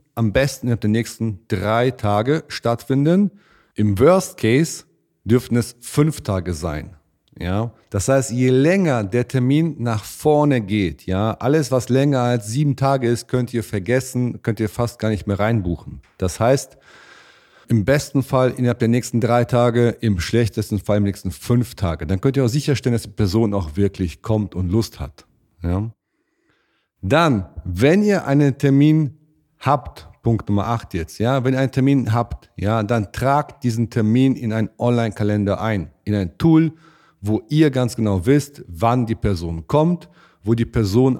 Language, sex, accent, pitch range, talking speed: German, male, German, 100-130 Hz, 170 wpm